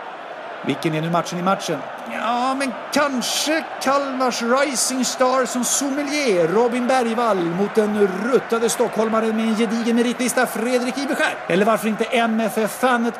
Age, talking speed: 50-69, 135 wpm